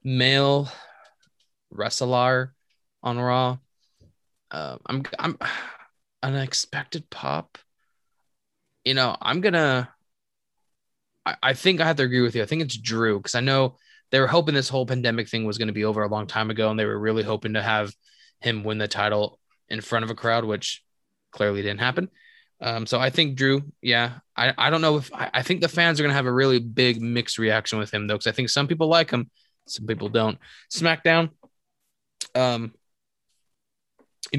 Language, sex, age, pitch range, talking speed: English, male, 20-39, 110-145 Hz, 185 wpm